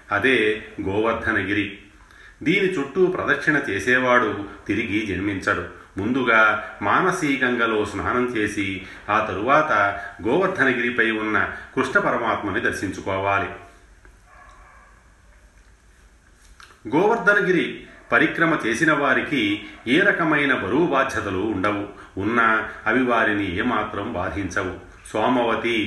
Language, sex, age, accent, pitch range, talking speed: Telugu, male, 30-49, native, 95-120 Hz, 75 wpm